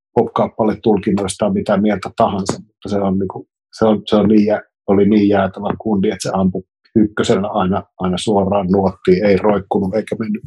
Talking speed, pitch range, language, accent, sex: 185 wpm, 100-110 Hz, Finnish, native, male